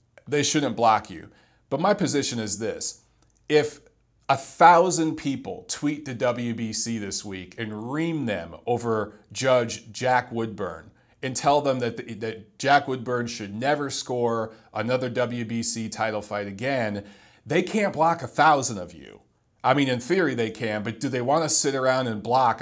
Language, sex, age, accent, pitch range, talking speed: English, male, 40-59, American, 115-145 Hz, 165 wpm